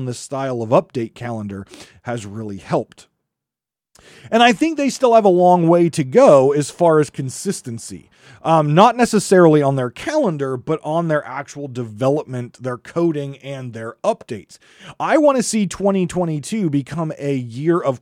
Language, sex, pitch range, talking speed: English, male, 140-190 Hz, 160 wpm